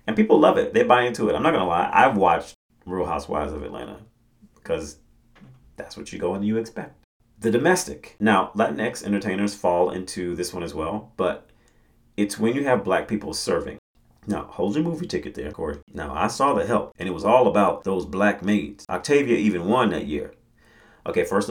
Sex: male